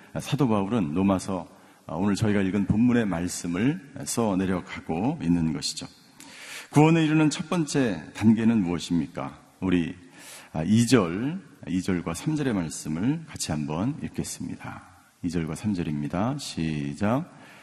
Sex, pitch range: male, 100-140 Hz